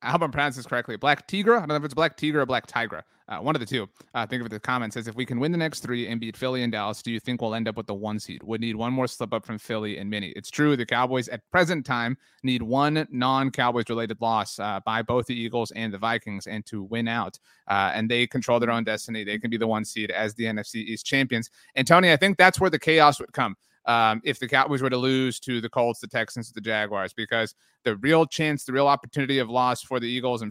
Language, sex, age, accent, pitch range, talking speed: English, male, 30-49, American, 115-145 Hz, 275 wpm